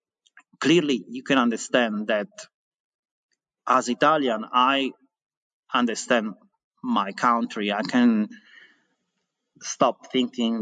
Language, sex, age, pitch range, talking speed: English, male, 30-49, 115-165 Hz, 85 wpm